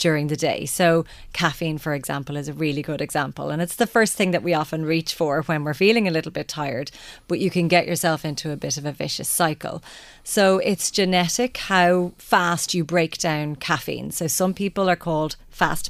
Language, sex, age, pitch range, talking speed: English, female, 30-49, 155-185 Hz, 210 wpm